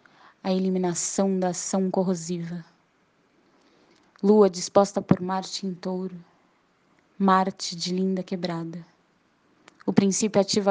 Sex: female